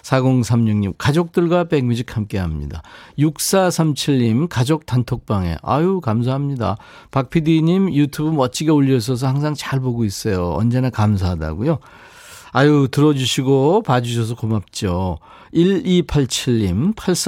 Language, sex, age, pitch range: Korean, male, 50-69, 105-160 Hz